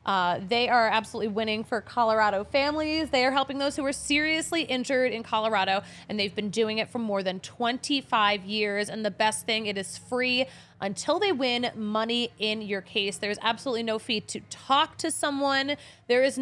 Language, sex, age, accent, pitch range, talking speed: English, female, 20-39, American, 210-260 Hz, 190 wpm